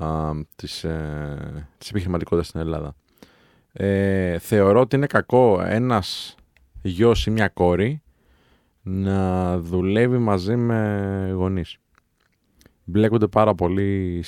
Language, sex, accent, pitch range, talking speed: Greek, male, native, 90-110 Hz, 95 wpm